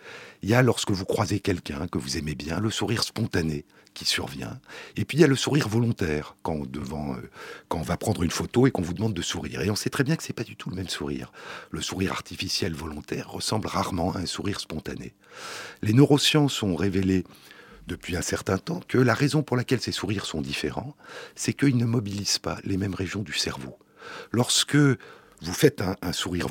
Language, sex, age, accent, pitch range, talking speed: French, male, 50-69, French, 85-115 Hz, 215 wpm